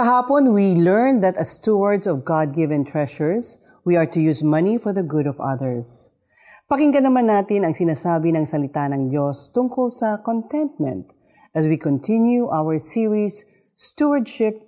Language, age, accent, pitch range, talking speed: Filipino, 40-59, native, 155-245 Hz, 155 wpm